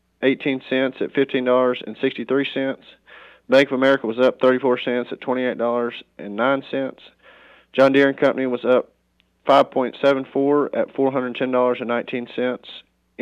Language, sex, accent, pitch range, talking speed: English, male, American, 125-140 Hz, 100 wpm